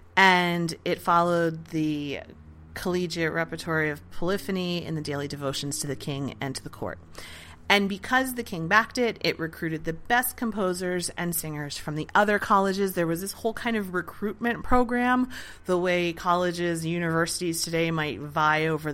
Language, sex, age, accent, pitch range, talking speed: English, female, 30-49, American, 150-180 Hz, 165 wpm